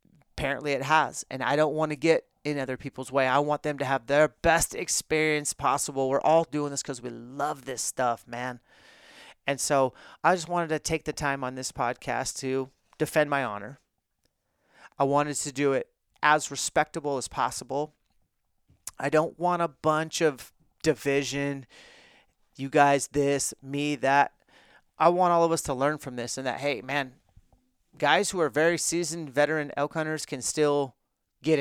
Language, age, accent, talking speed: English, 30-49, American, 175 wpm